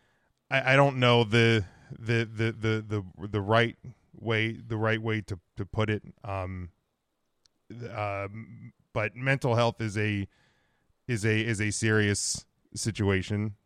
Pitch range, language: 95-115 Hz, English